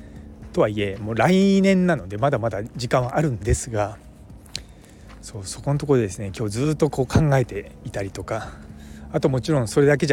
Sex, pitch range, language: male, 95-150 Hz, Japanese